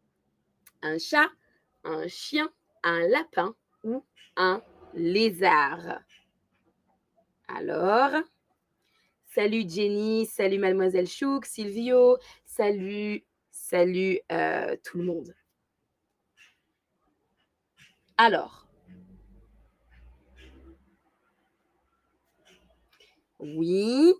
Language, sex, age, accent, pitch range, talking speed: French, female, 20-39, French, 180-280 Hz, 60 wpm